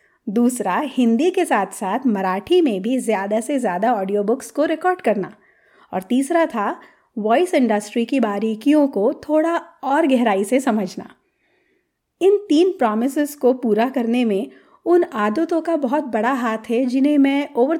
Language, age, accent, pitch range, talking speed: Hindi, 30-49, native, 225-290 Hz, 155 wpm